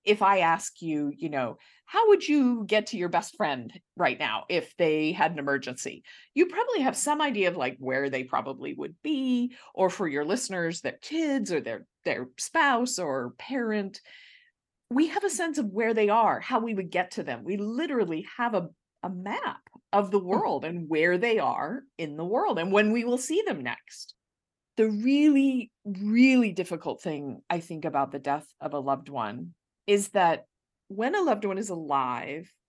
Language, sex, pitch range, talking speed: English, female, 175-270 Hz, 190 wpm